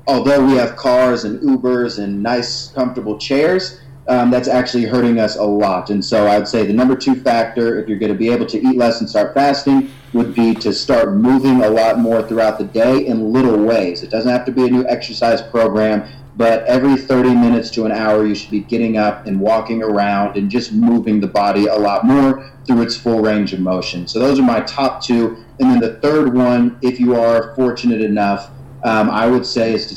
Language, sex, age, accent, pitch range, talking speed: English, male, 30-49, American, 110-125 Hz, 220 wpm